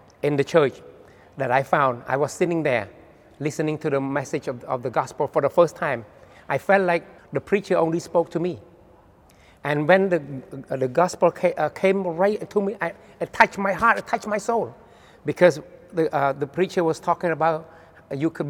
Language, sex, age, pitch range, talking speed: English, male, 60-79, 155-185 Hz, 200 wpm